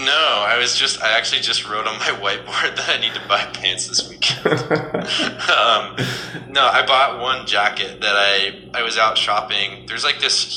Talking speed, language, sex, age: 185 wpm, English, male, 20-39